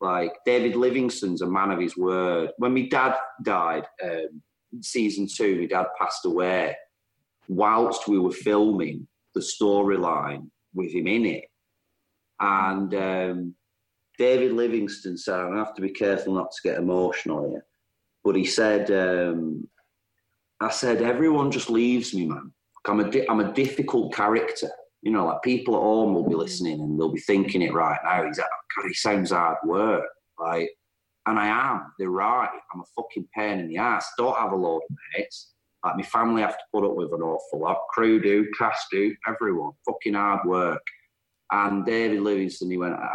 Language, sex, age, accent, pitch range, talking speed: English, male, 30-49, British, 90-115 Hz, 175 wpm